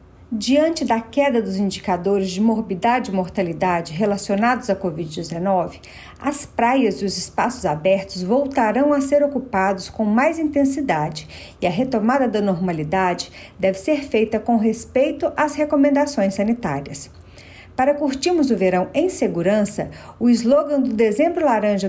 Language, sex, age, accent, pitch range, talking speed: Portuguese, female, 50-69, Brazilian, 195-270 Hz, 135 wpm